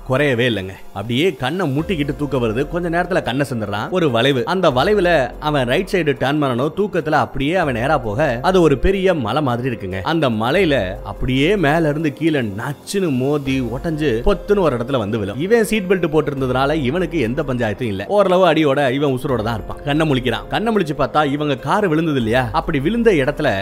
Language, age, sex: Tamil, 30-49, male